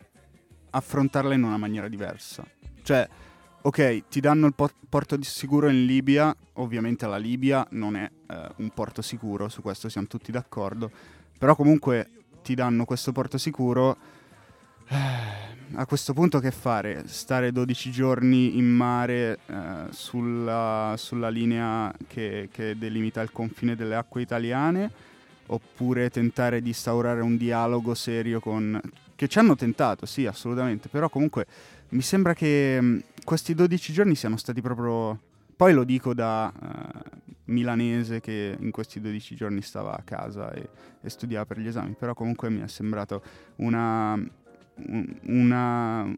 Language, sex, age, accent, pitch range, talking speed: Italian, male, 20-39, native, 110-135 Hz, 145 wpm